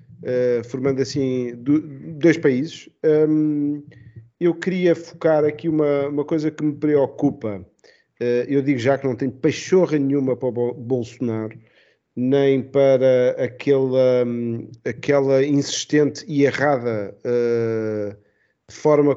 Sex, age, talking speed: male, 40-59, 105 wpm